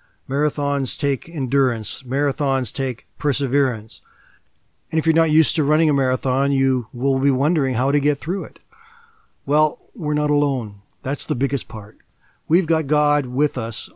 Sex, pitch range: male, 135-170 Hz